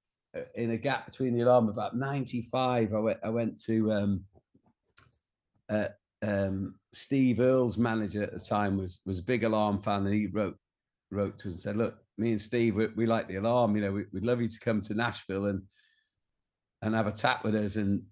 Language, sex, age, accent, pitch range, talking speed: English, male, 50-69, British, 100-115 Hz, 210 wpm